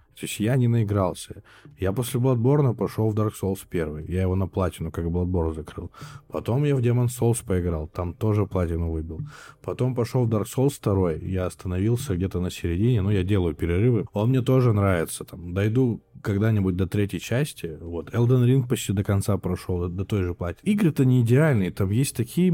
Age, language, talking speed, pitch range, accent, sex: 20-39, Russian, 195 wpm, 95-125 Hz, native, male